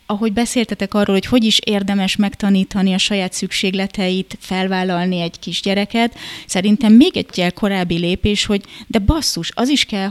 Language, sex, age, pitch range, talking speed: Hungarian, female, 20-39, 175-210 Hz, 150 wpm